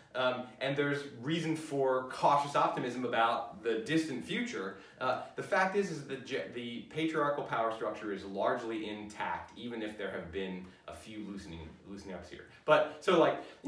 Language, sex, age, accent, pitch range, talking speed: English, male, 30-49, American, 120-160 Hz, 170 wpm